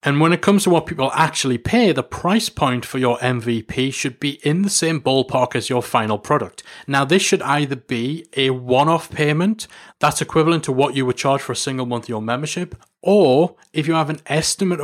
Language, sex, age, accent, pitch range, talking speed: English, male, 30-49, British, 120-155 Hz, 215 wpm